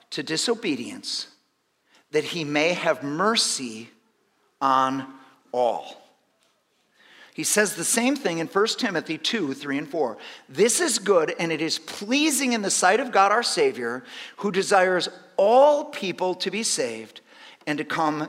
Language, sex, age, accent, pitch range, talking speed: English, male, 50-69, American, 185-290 Hz, 150 wpm